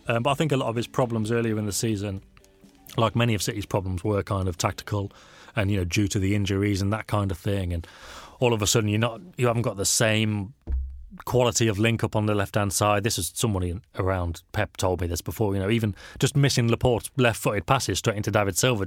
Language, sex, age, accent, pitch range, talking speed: English, male, 30-49, British, 95-115 Hz, 245 wpm